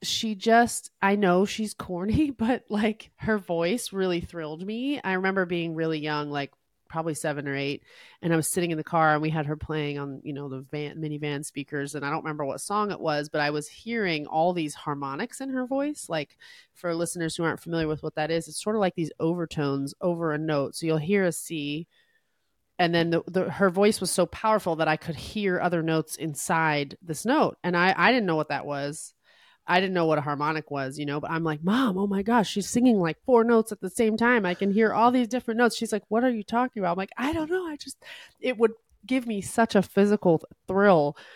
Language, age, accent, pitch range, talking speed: English, 30-49, American, 155-205 Hz, 235 wpm